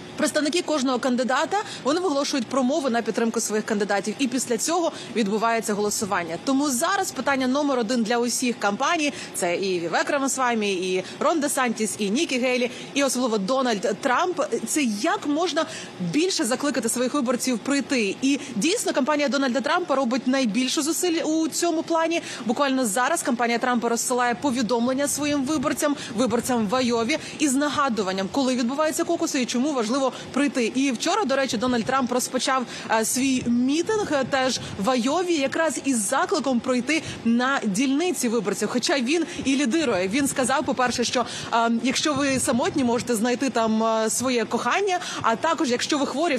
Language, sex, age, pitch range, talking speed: Ukrainian, female, 30-49, 235-290 Hz, 155 wpm